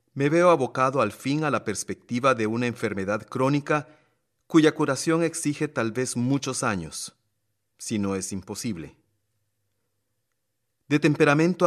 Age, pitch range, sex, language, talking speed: 40-59, 105-125 Hz, male, Spanish, 130 wpm